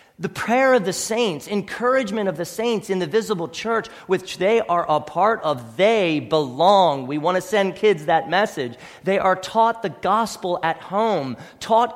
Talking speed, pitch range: 180 wpm, 160-215 Hz